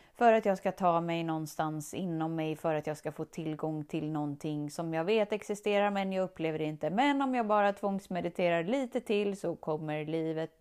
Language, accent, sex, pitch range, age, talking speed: Swedish, native, female, 150-185 Hz, 30-49, 200 wpm